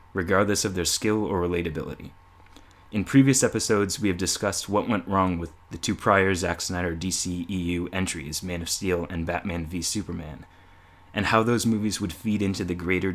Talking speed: 180 wpm